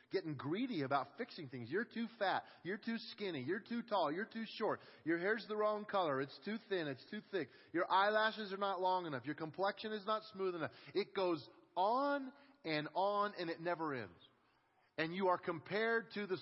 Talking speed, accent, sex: 200 wpm, American, male